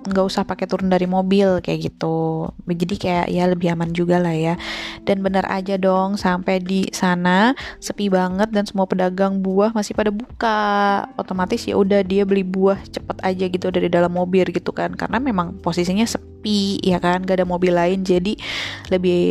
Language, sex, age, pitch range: Indonesian, female, 20-39, 185-230 Hz